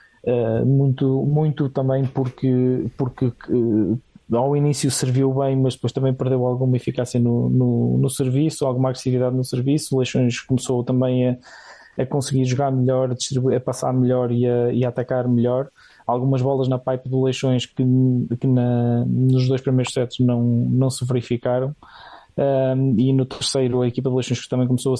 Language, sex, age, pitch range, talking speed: Portuguese, male, 20-39, 120-130 Hz, 155 wpm